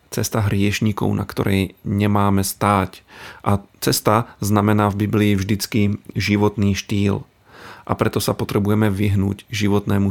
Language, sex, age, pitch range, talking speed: Slovak, male, 40-59, 100-110 Hz, 120 wpm